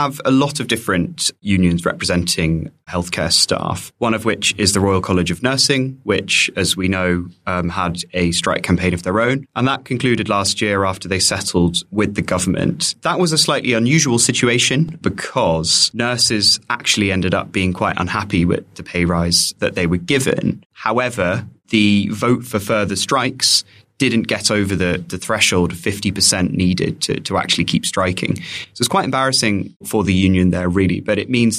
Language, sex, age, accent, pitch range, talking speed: English, male, 20-39, British, 90-115 Hz, 180 wpm